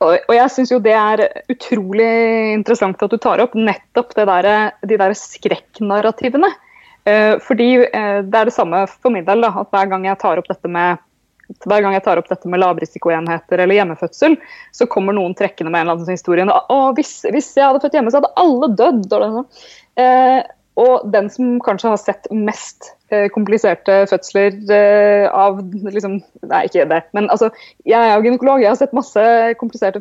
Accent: Swedish